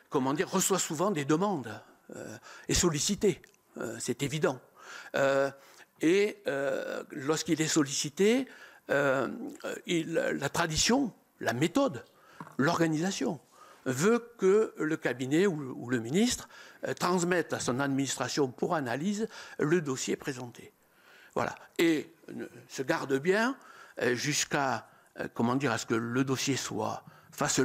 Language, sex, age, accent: French, male, 60-79, French